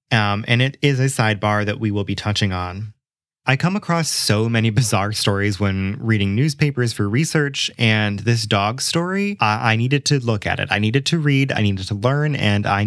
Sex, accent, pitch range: male, American, 105-135 Hz